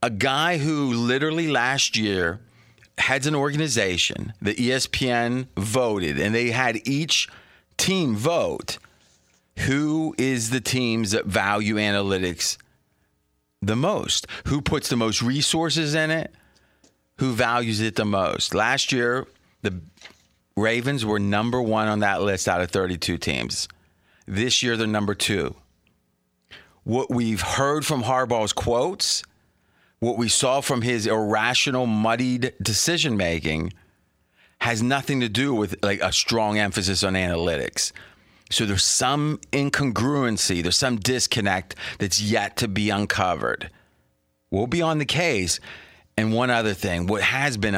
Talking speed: 135 wpm